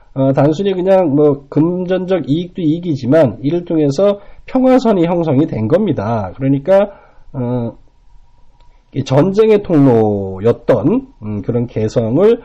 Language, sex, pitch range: Korean, male, 125-175 Hz